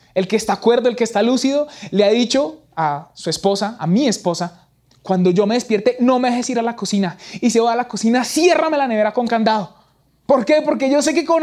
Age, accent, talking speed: 20-39, Colombian, 240 wpm